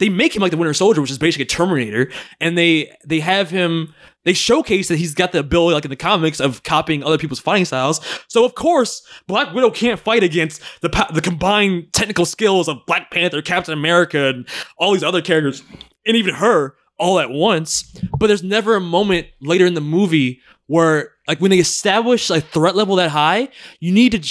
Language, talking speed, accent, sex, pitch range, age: English, 215 wpm, American, male, 160-220 Hz, 20-39